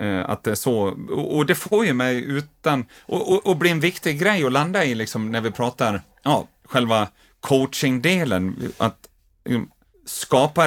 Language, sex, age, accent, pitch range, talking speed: Swedish, male, 30-49, native, 110-135 Hz, 170 wpm